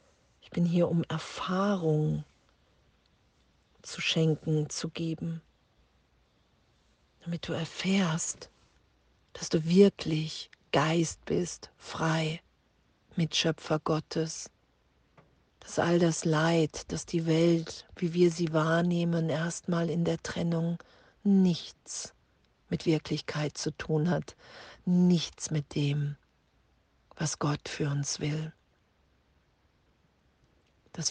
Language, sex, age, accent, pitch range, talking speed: German, female, 40-59, German, 150-170 Hz, 95 wpm